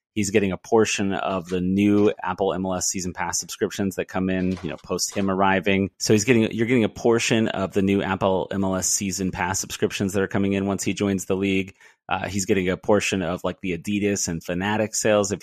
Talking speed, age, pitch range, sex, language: 220 wpm, 30-49, 90-110 Hz, male, English